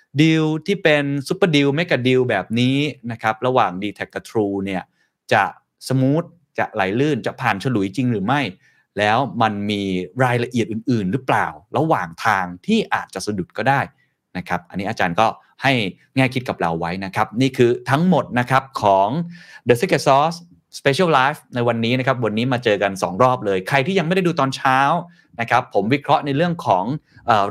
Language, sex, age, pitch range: Thai, male, 20-39, 110-145 Hz